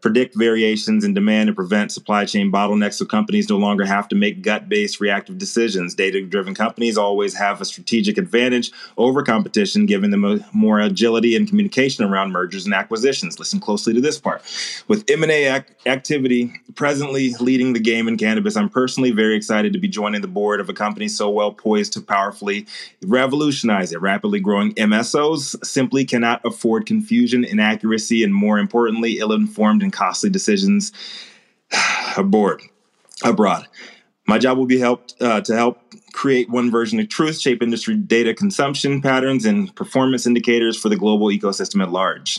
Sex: male